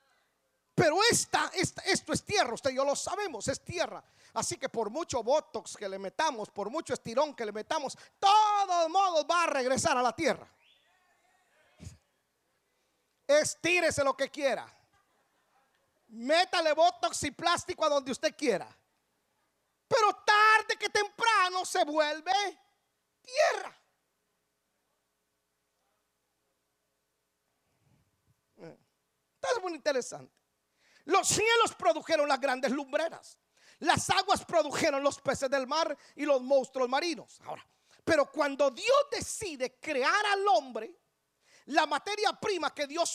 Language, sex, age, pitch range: Spanish, male, 40-59, 260-360 Hz